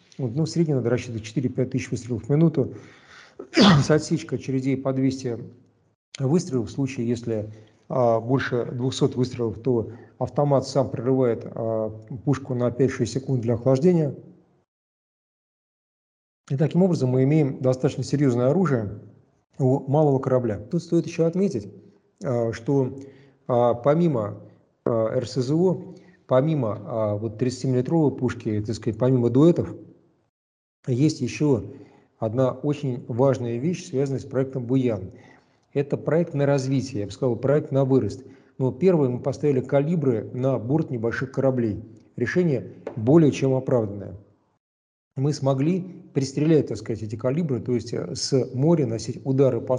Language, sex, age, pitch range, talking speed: Russian, male, 50-69, 120-145 Hz, 135 wpm